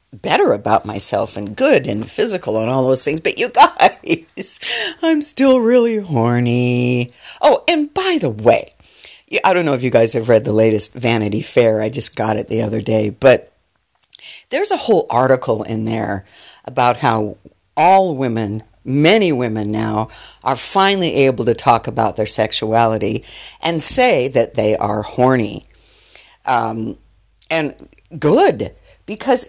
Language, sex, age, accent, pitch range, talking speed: English, female, 50-69, American, 110-160 Hz, 150 wpm